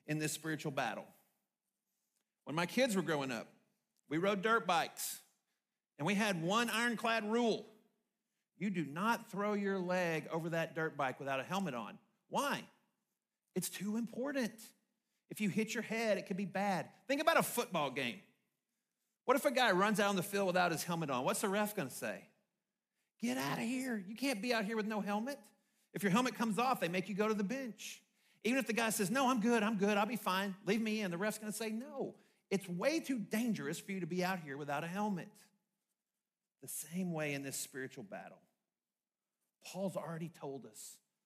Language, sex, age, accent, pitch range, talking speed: English, male, 40-59, American, 170-220 Hz, 200 wpm